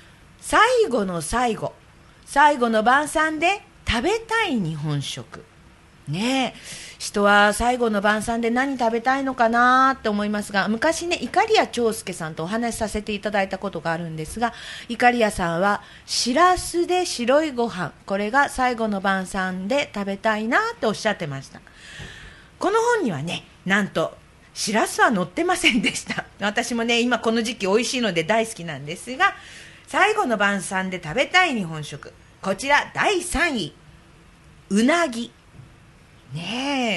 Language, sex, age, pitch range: Japanese, female, 40-59, 190-280 Hz